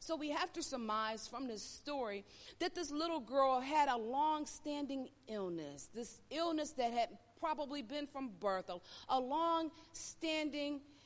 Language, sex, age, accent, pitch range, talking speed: English, female, 40-59, American, 235-355 Hz, 135 wpm